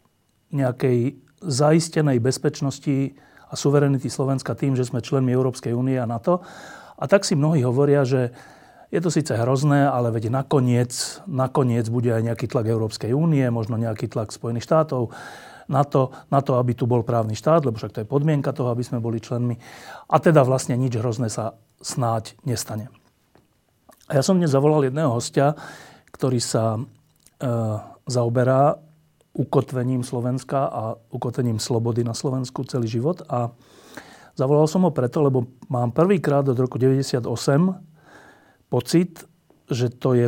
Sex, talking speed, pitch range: male, 150 wpm, 120-145 Hz